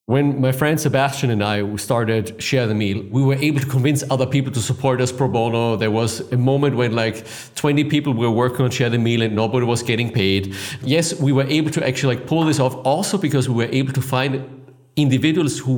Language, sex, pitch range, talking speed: English, male, 115-140 Hz, 230 wpm